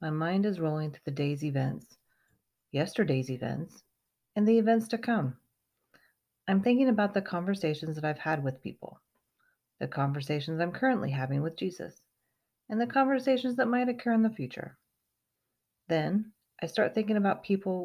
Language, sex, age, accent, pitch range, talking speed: English, female, 40-59, American, 150-205 Hz, 160 wpm